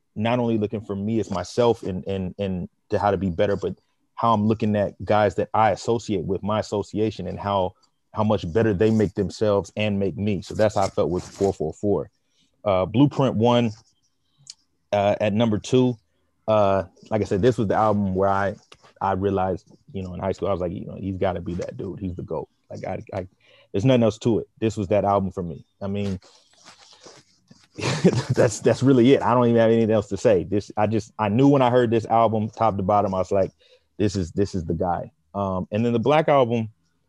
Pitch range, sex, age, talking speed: 95-110 Hz, male, 30-49, 220 wpm